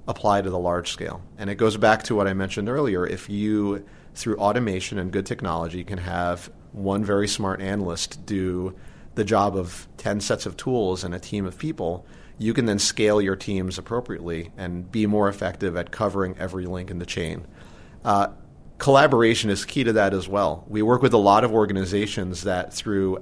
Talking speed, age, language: 195 wpm, 30-49, English